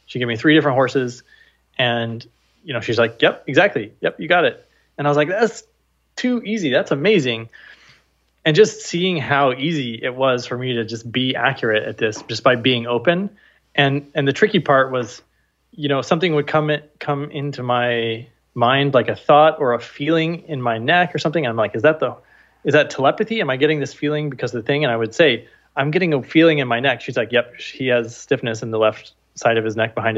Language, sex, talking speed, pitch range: English, male, 225 wpm, 115-155 Hz